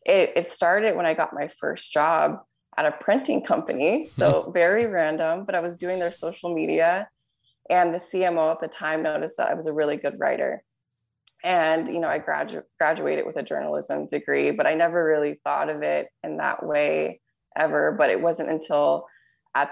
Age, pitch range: 20-39, 155-185 Hz